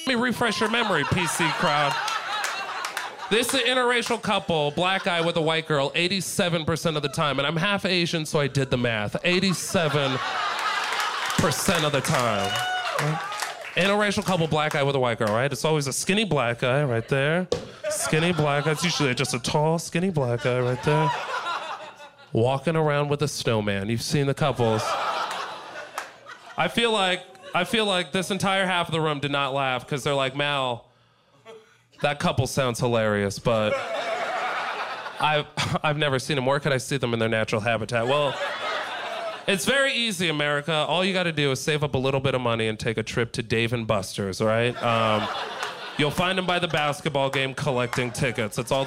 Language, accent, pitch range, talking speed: English, American, 130-180 Hz, 185 wpm